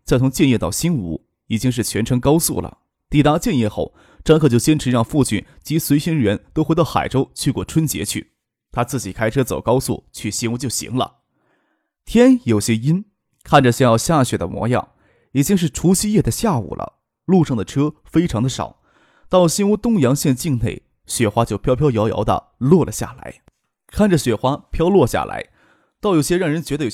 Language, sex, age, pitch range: Chinese, male, 20-39, 115-165 Hz